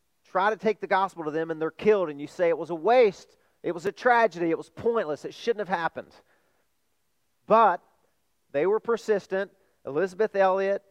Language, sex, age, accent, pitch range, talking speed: English, male, 40-59, American, 155-200 Hz, 185 wpm